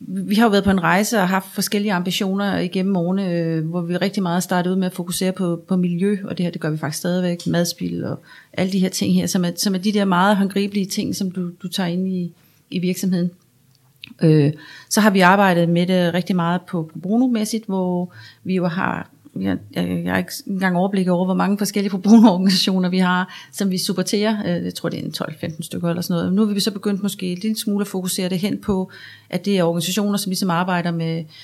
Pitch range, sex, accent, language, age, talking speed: 175-195 Hz, female, native, Danish, 30-49, 225 wpm